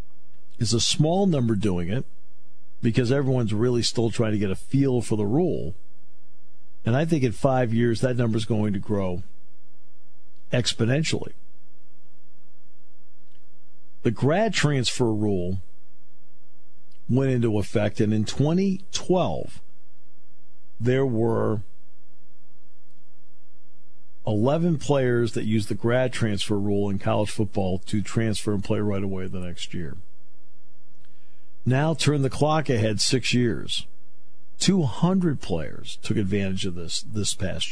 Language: English